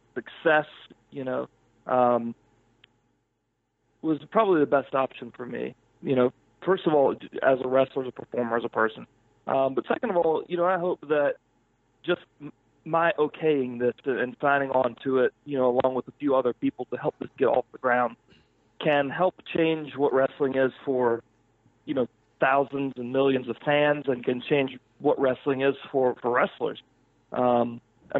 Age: 40-59